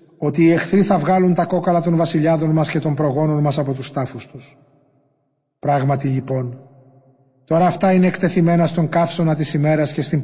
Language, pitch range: Greek, 135-165 Hz